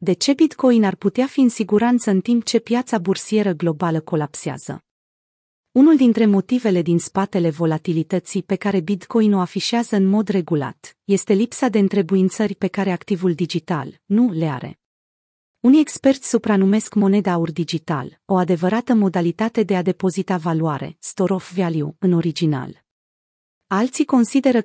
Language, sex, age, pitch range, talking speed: Romanian, female, 30-49, 175-215 Hz, 140 wpm